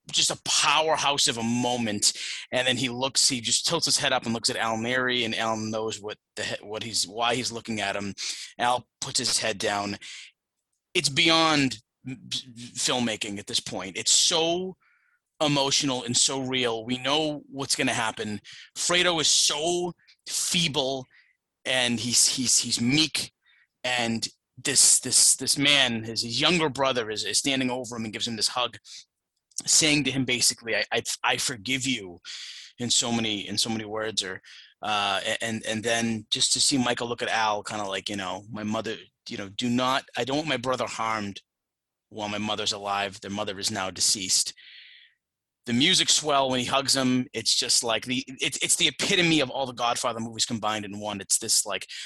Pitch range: 110-135 Hz